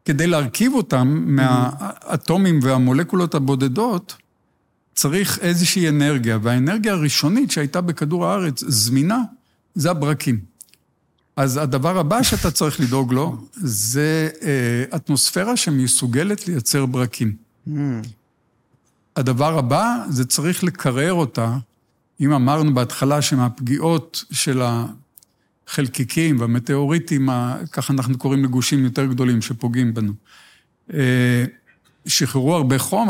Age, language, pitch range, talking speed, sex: 50-69, Hebrew, 130-170 Hz, 100 wpm, male